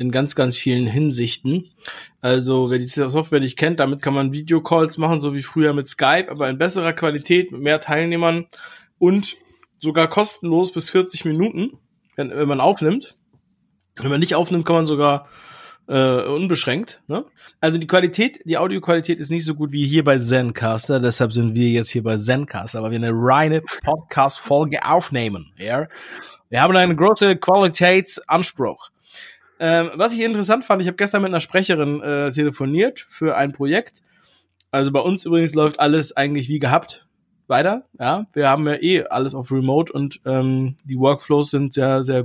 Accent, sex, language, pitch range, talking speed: German, male, German, 135-175 Hz, 175 wpm